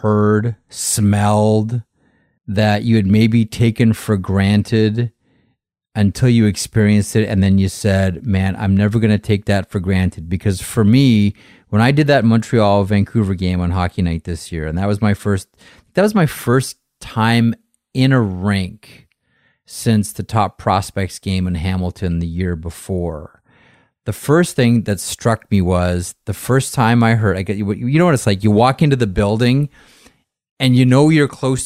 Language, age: English, 30-49